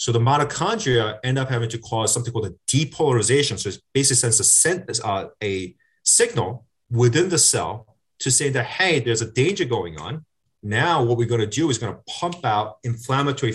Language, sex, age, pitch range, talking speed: English, male, 30-49, 115-140 Hz, 195 wpm